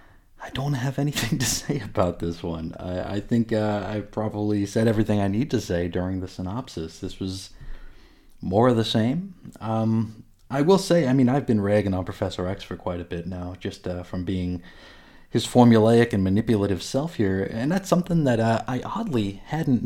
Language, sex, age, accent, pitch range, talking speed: English, male, 30-49, American, 95-115 Hz, 195 wpm